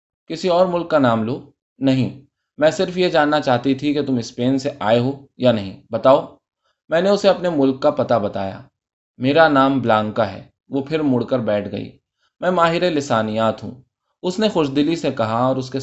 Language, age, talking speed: Urdu, 20-39, 195 wpm